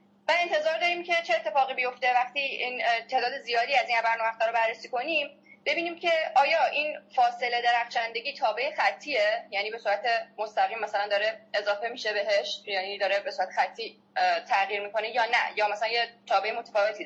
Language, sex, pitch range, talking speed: Persian, female, 205-300 Hz, 170 wpm